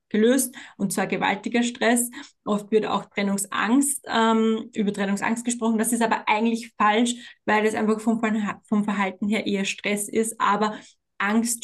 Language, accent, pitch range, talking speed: German, German, 205-230 Hz, 155 wpm